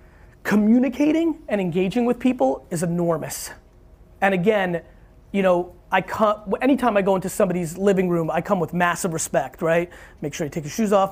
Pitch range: 170-200 Hz